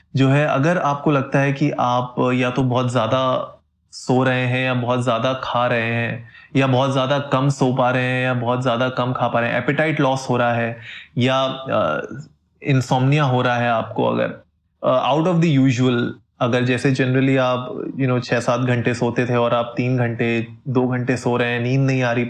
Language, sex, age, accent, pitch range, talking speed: Hindi, male, 20-39, native, 120-140 Hz, 205 wpm